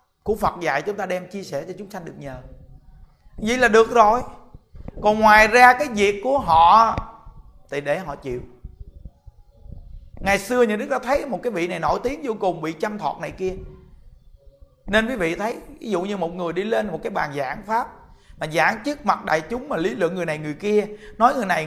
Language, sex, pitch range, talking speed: Vietnamese, male, 135-220 Hz, 220 wpm